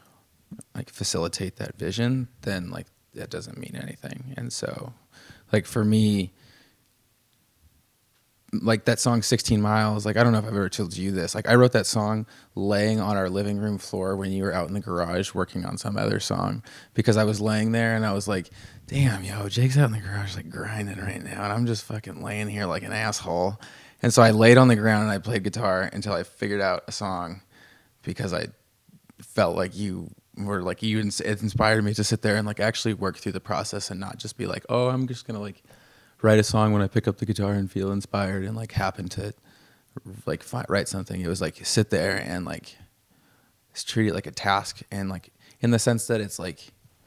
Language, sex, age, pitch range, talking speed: English, male, 20-39, 95-110 Hz, 215 wpm